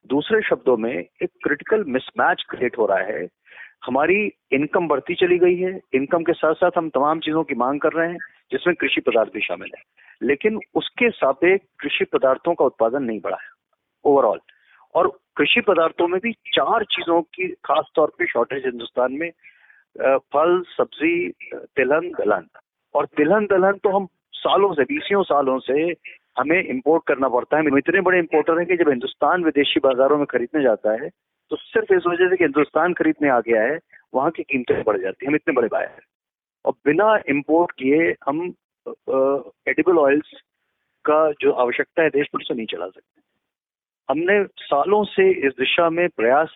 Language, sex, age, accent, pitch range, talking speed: Hindi, male, 40-59, native, 145-205 Hz, 155 wpm